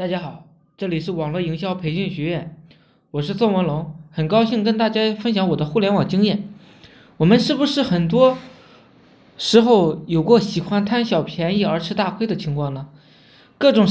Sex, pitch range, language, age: male, 170-235 Hz, Chinese, 20-39